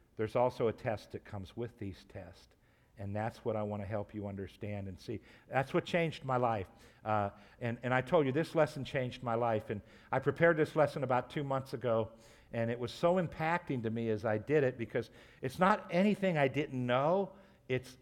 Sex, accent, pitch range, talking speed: male, American, 110-145 Hz, 215 wpm